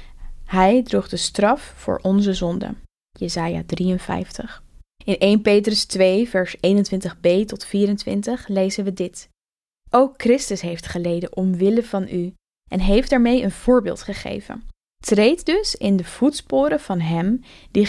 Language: Dutch